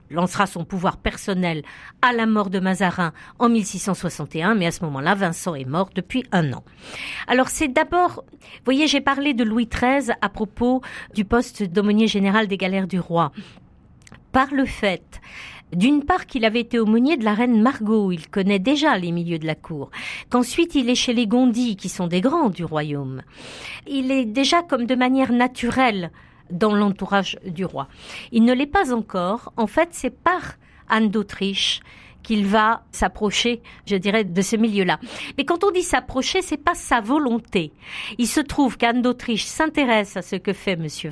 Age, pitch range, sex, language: 50-69, 185-245 Hz, female, French